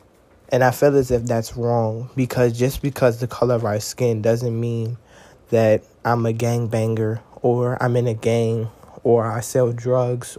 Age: 20-39